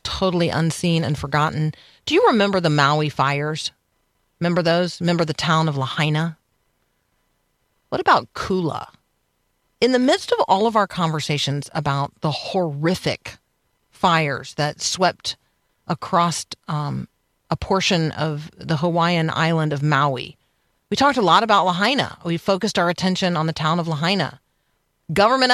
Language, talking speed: English, 140 wpm